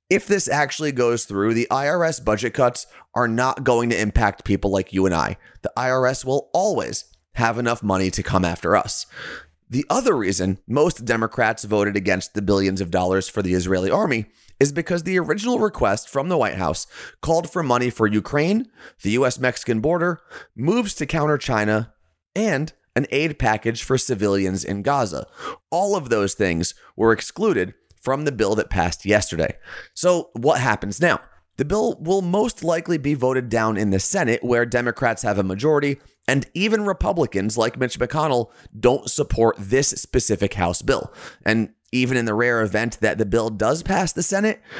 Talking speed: 175 wpm